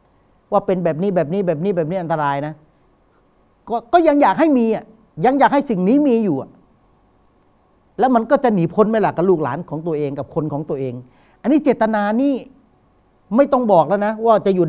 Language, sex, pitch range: Thai, male, 160-240 Hz